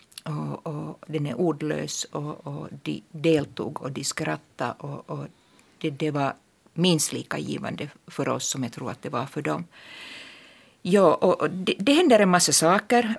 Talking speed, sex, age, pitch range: 170 wpm, female, 50-69, 130-165 Hz